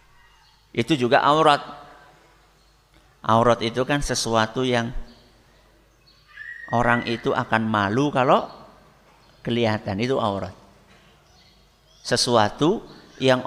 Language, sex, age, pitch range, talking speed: Indonesian, male, 50-69, 115-150 Hz, 80 wpm